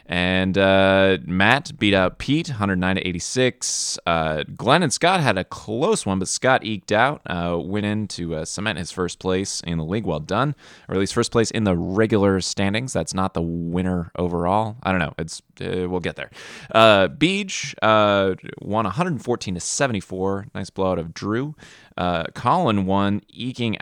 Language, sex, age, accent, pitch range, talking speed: English, male, 20-39, American, 90-110 Hz, 180 wpm